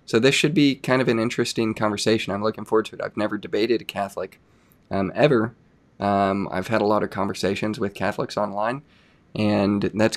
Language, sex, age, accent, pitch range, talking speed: English, male, 20-39, American, 100-115 Hz, 195 wpm